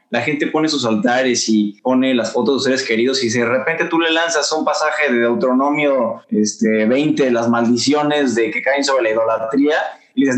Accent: Mexican